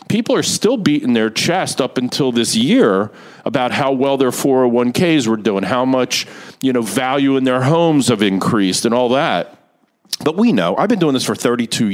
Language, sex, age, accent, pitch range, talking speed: English, male, 50-69, American, 120-185 Hz, 195 wpm